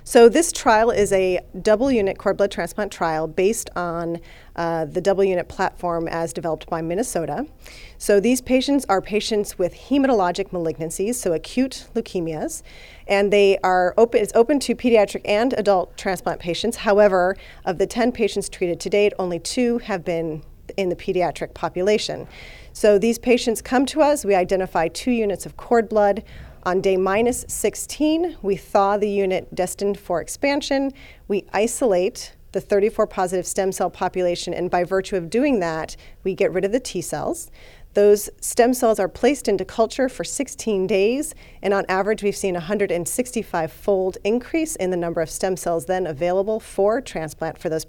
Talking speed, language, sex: 170 wpm, English, female